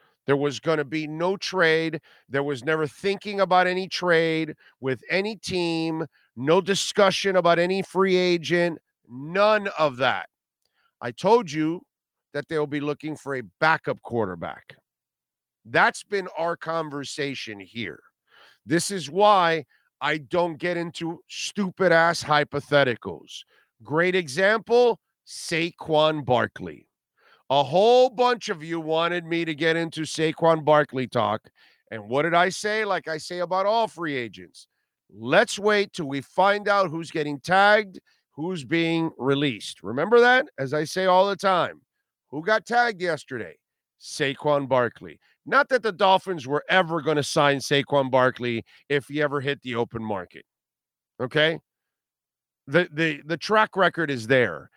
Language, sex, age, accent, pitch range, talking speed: English, male, 50-69, American, 145-185 Hz, 145 wpm